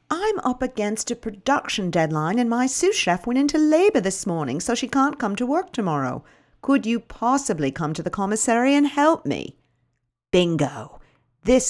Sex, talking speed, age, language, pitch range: female, 175 wpm, 50-69, English, 155-250 Hz